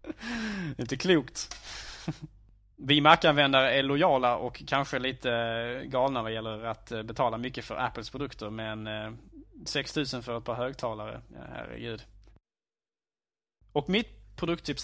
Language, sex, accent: Swedish, male, Norwegian